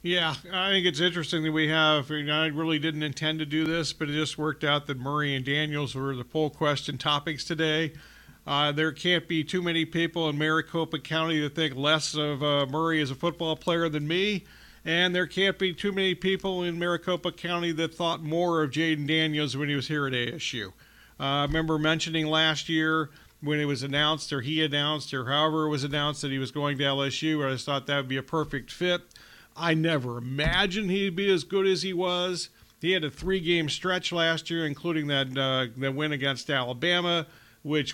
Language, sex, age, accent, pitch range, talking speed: English, male, 50-69, American, 145-175 Hz, 210 wpm